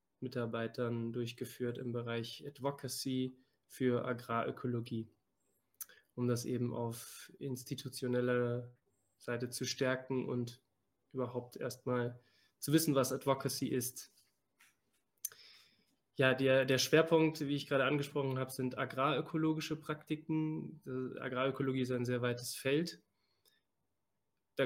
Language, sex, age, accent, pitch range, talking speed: German, male, 20-39, German, 120-135 Hz, 100 wpm